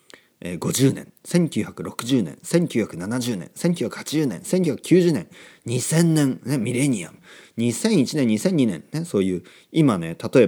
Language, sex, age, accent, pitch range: Japanese, male, 40-59, native, 110-175 Hz